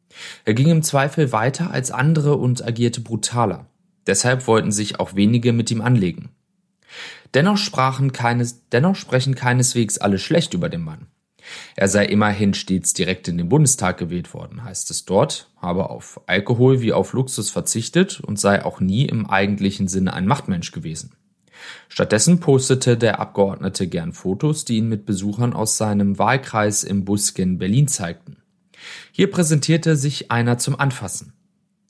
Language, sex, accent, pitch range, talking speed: German, male, German, 100-140 Hz, 155 wpm